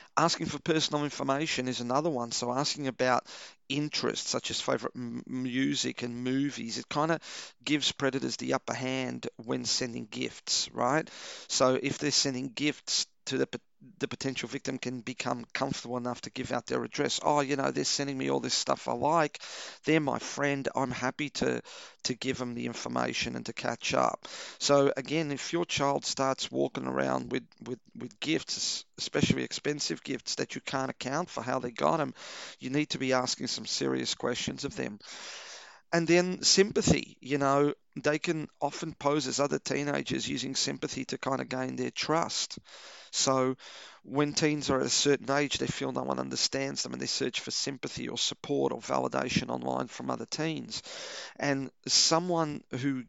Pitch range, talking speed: 120-145 Hz, 180 wpm